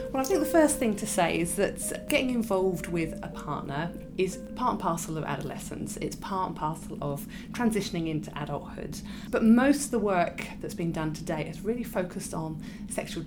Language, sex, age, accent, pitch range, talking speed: English, female, 30-49, British, 170-215 Hz, 195 wpm